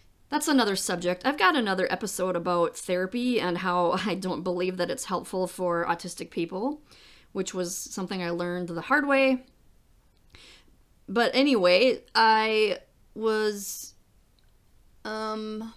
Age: 30-49